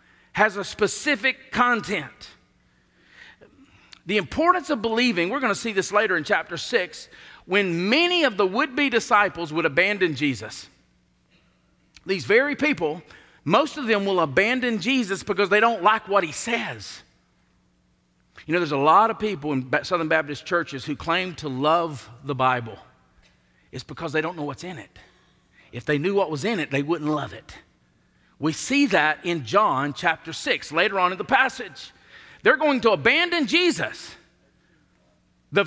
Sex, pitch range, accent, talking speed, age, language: male, 140-235 Hz, American, 160 wpm, 50-69, English